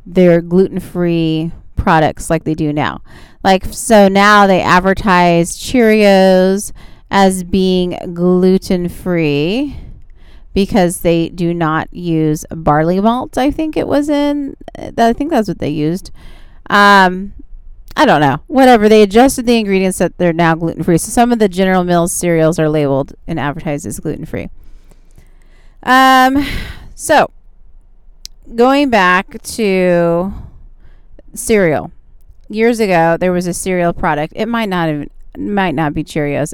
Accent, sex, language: American, female, English